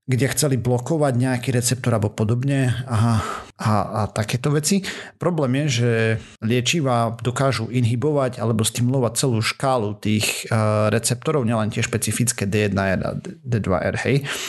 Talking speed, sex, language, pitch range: 135 wpm, male, Slovak, 110-135 Hz